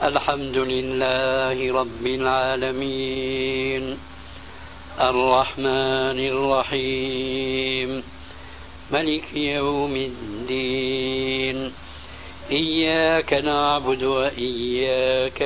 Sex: male